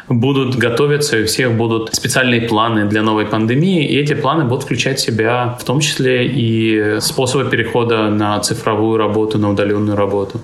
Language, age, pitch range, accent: Russian, 20-39, 115-150 Hz, native